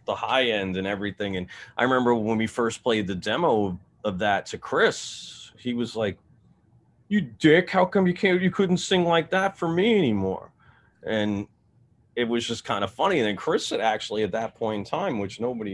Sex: male